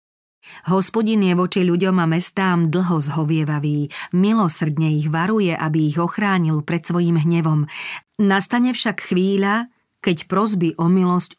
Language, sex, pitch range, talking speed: Slovak, female, 160-195 Hz, 125 wpm